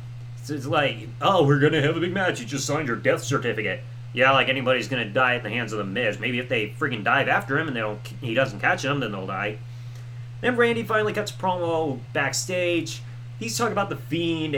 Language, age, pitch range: English, 30-49, 120-160 Hz